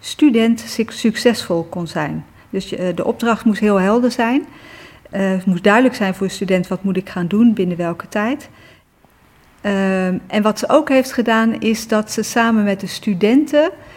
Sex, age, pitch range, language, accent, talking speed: female, 40-59, 190-230 Hz, Dutch, Dutch, 175 wpm